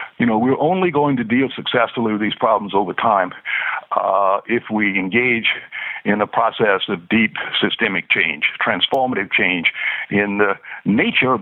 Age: 60-79